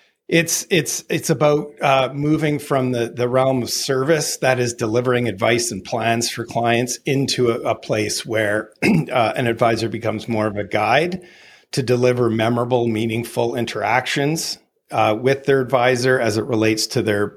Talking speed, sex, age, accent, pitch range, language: 160 wpm, male, 40-59, American, 115-140 Hz, English